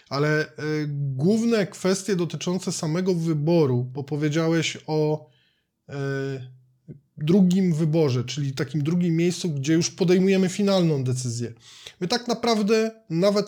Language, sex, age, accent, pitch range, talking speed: Polish, male, 20-39, native, 150-185 Hz, 105 wpm